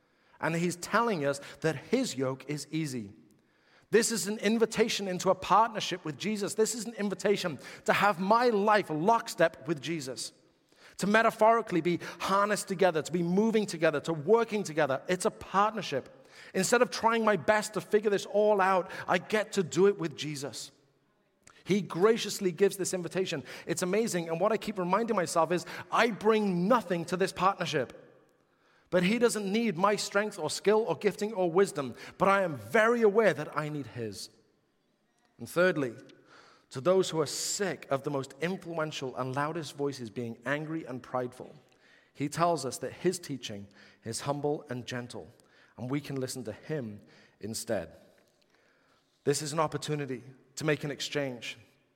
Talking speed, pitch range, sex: 165 wpm, 140-200 Hz, male